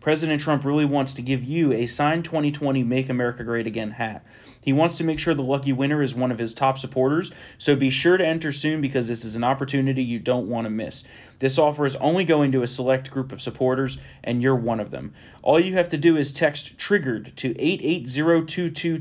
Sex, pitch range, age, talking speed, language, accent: male, 125-155 Hz, 30-49, 225 wpm, English, American